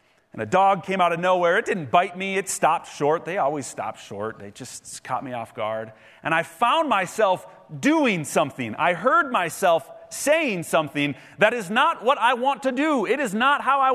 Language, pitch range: English, 145-200 Hz